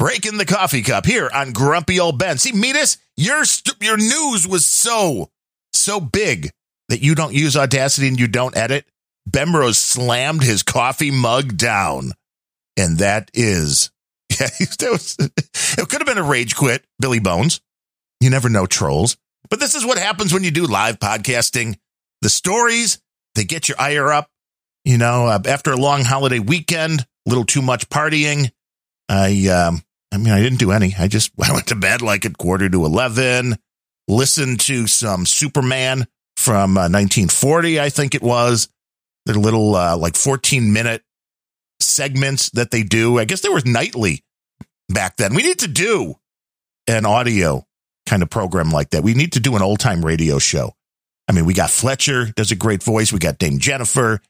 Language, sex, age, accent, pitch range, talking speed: English, male, 50-69, American, 105-145 Hz, 175 wpm